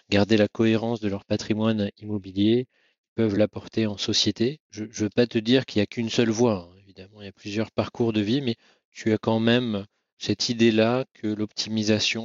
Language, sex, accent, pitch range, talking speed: French, male, French, 100-115 Hz, 205 wpm